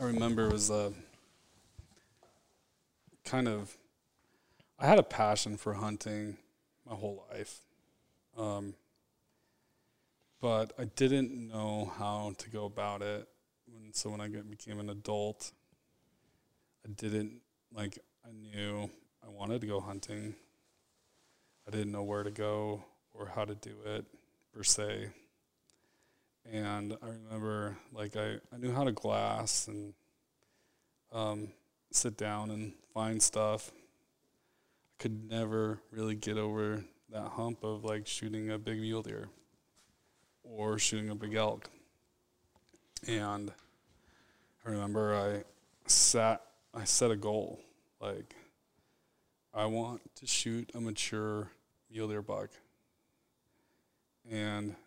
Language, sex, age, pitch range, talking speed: English, male, 20-39, 105-110 Hz, 125 wpm